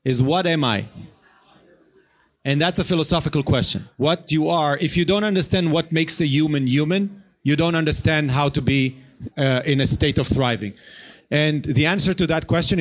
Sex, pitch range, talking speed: male, 135-165 Hz, 185 wpm